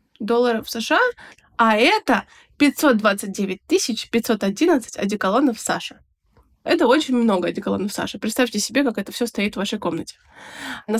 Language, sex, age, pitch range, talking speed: Russian, female, 20-39, 205-260 Hz, 125 wpm